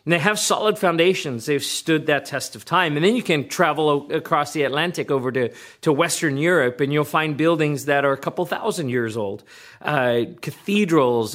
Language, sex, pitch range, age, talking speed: English, male, 120-160 Hz, 40-59, 200 wpm